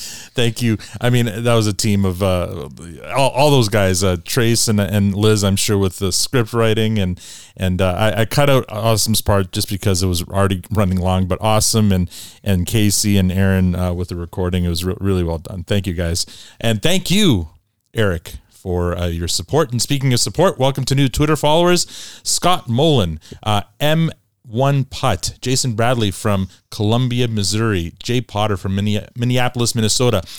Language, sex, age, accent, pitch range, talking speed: English, male, 30-49, American, 100-140 Hz, 185 wpm